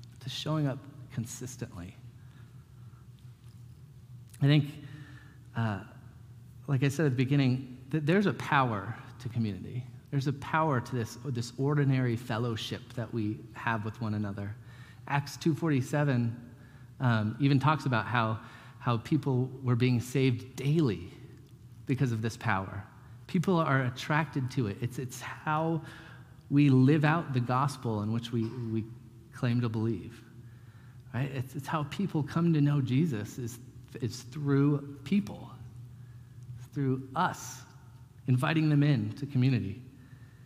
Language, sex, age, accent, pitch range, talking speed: English, male, 30-49, American, 120-140 Hz, 135 wpm